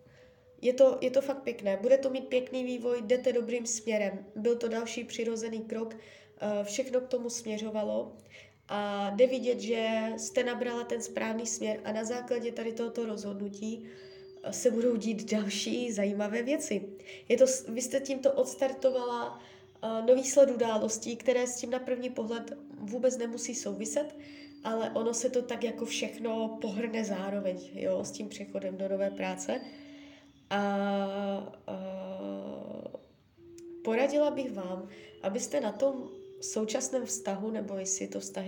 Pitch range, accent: 195-245 Hz, native